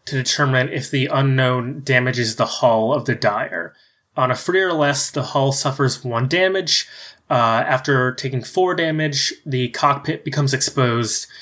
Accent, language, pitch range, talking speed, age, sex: American, English, 125-145 Hz, 160 wpm, 20-39, male